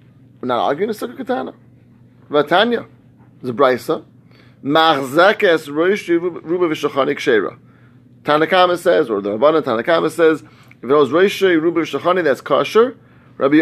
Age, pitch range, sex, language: 30-49, 135-180 Hz, male, English